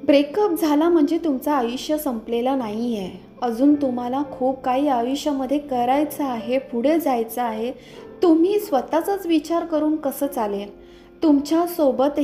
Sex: female